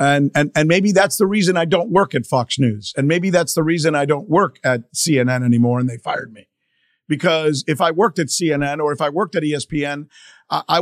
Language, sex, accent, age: English, male, American, 50-69